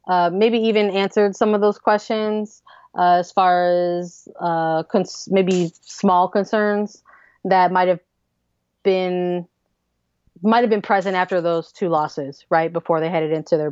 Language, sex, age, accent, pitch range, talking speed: English, female, 20-39, American, 170-195 Hz, 155 wpm